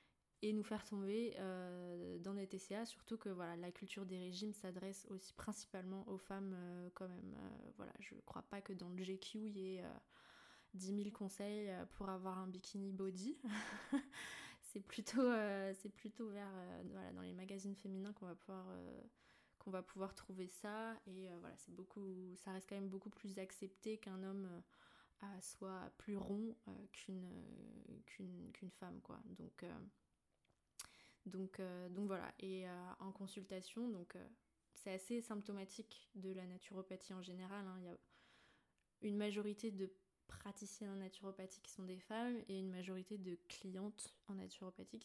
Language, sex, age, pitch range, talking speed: French, female, 20-39, 185-210 Hz, 175 wpm